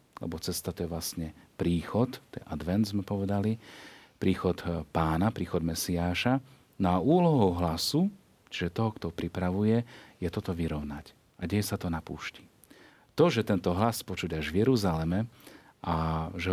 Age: 40-59